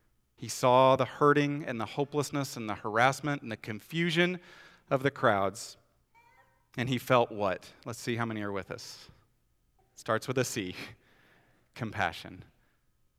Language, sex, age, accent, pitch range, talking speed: English, male, 30-49, American, 115-145 Hz, 150 wpm